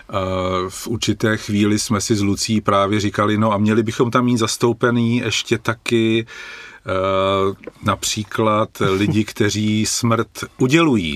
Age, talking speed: 40-59, 125 wpm